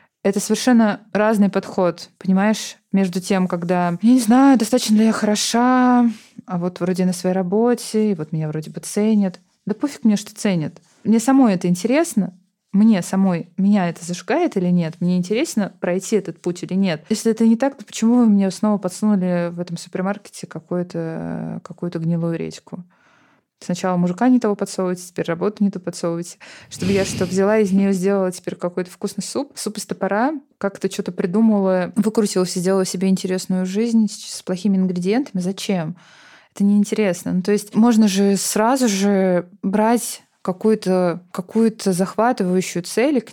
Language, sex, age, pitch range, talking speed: Russian, female, 20-39, 180-215 Hz, 165 wpm